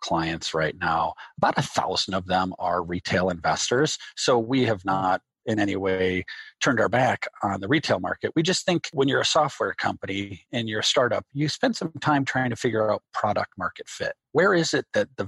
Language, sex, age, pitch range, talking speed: English, male, 40-59, 100-140 Hz, 210 wpm